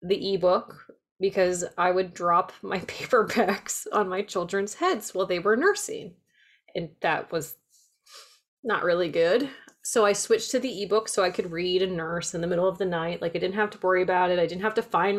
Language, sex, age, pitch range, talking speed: English, female, 20-39, 175-235 Hz, 210 wpm